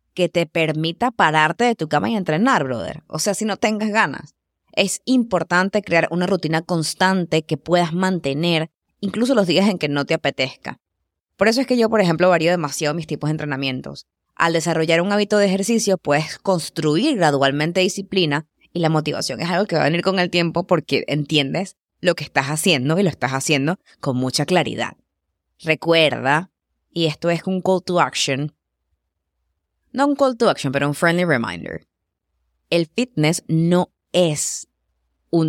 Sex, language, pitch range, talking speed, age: female, English, 145-180 Hz, 175 wpm, 20-39